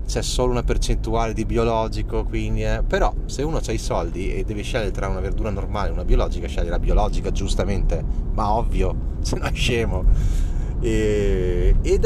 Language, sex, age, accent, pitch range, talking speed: Italian, male, 20-39, native, 80-115 Hz, 180 wpm